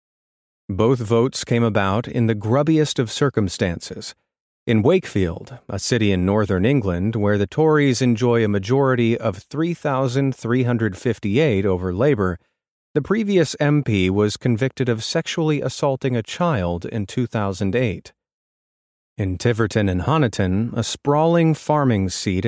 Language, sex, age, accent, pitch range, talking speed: English, male, 40-59, American, 100-140 Hz, 125 wpm